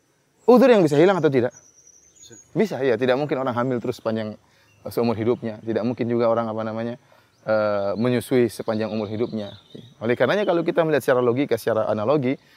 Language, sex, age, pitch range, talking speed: Indonesian, male, 20-39, 115-140 Hz, 170 wpm